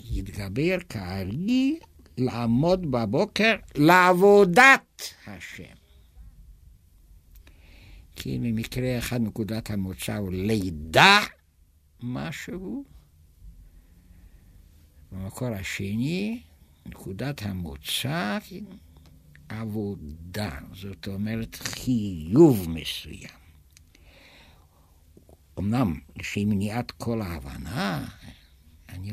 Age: 60-79